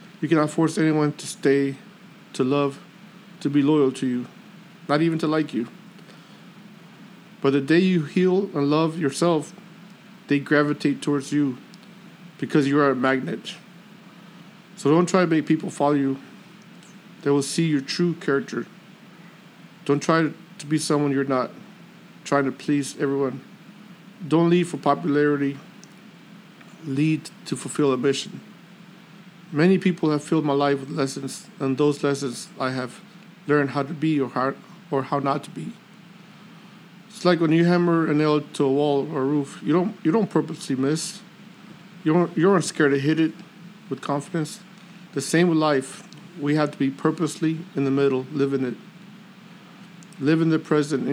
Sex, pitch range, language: male, 140-190 Hz, English